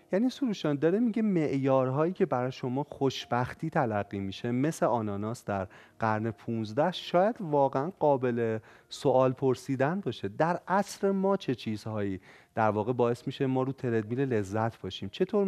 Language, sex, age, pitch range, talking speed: Persian, male, 30-49, 110-160 Hz, 145 wpm